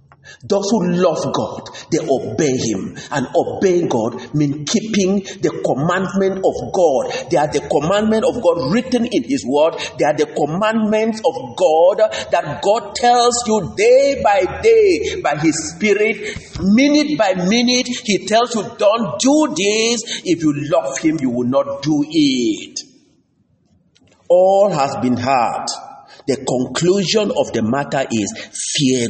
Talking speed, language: 145 wpm, English